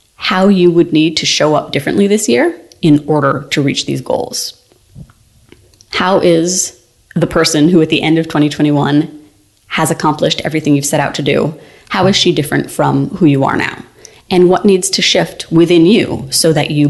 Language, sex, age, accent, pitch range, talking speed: English, female, 30-49, American, 150-175 Hz, 190 wpm